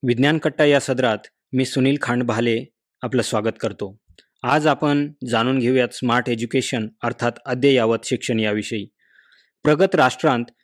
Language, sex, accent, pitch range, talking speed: Marathi, male, native, 115-135 Hz, 125 wpm